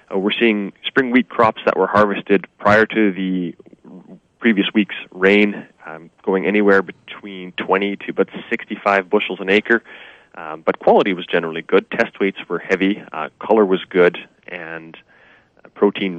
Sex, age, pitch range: male, 30-49, 90-105 Hz